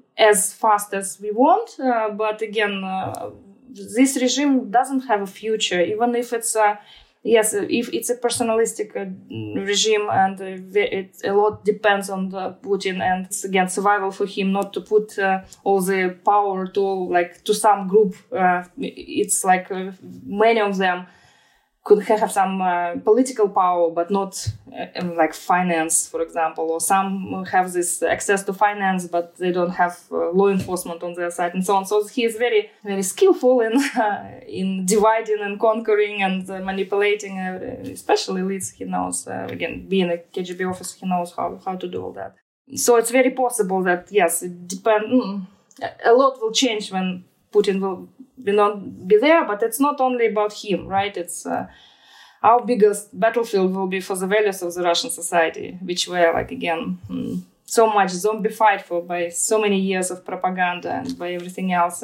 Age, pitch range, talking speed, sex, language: 20-39, 185-220 Hz, 180 wpm, female, English